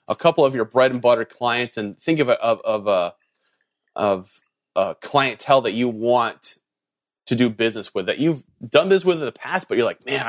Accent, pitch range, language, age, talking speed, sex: American, 120-155 Hz, English, 30-49, 215 wpm, male